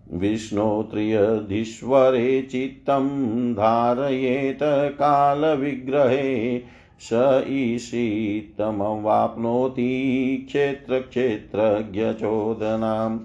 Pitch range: 110-140 Hz